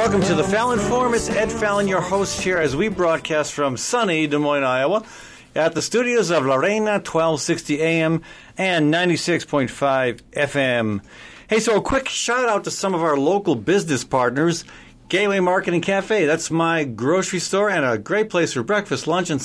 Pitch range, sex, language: 140-195 Hz, male, English